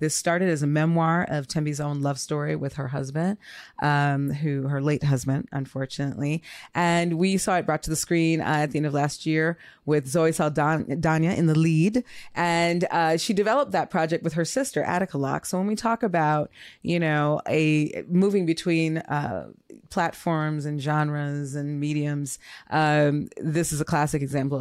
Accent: American